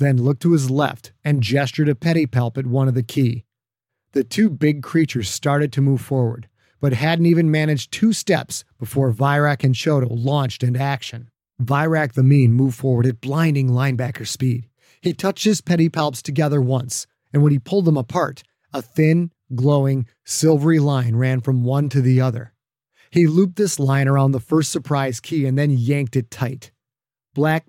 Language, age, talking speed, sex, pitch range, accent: English, 30-49, 180 wpm, male, 130-155 Hz, American